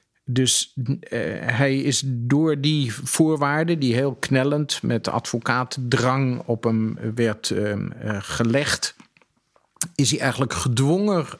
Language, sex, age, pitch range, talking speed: Dutch, male, 50-69, 115-140 Hz, 120 wpm